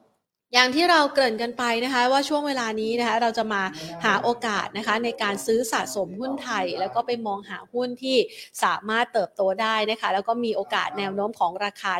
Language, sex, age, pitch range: Thai, female, 30-49, 210-265 Hz